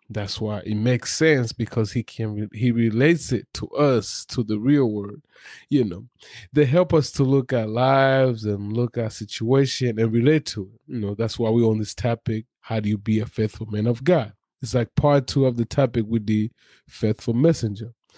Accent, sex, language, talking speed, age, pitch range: American, male, English, 205 wpm, 20-39, 110-135 Hz